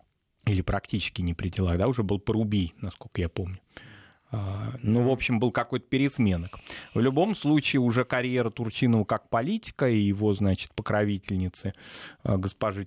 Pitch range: 100-125 Hz